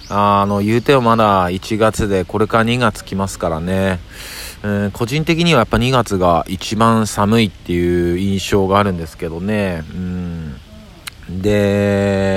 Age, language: 40-59, Japanese